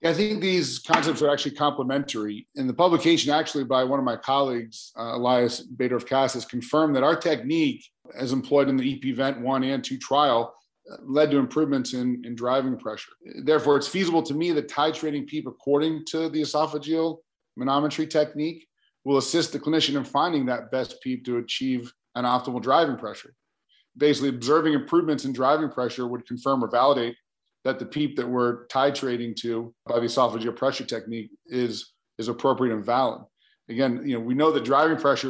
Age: 40-59